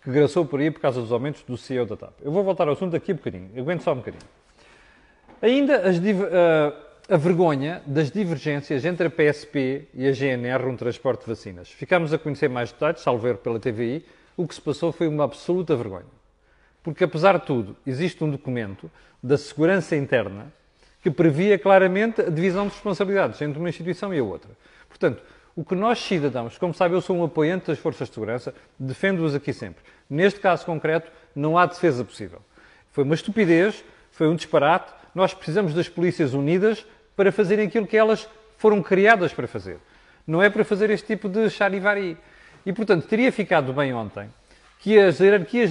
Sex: male